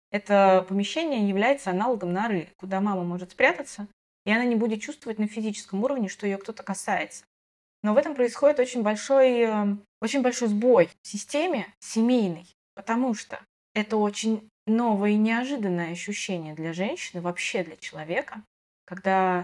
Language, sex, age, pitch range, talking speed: Russian, female, 20-39, 185-220 Hz, 140 wpm